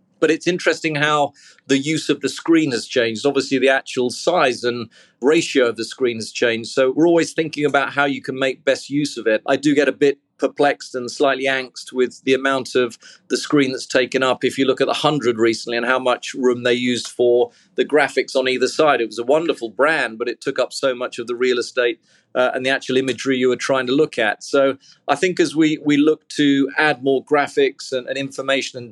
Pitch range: 125-140 Hz